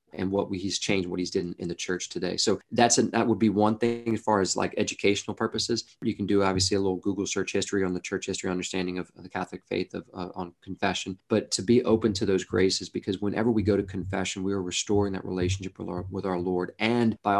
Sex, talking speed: male, 250 wpm